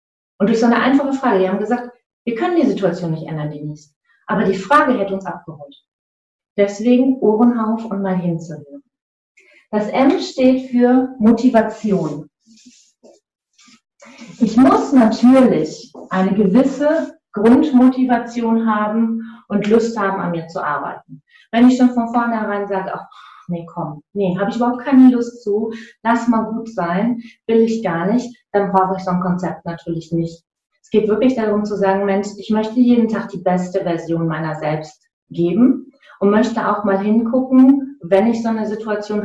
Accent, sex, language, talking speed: German, female, German, 160 wpm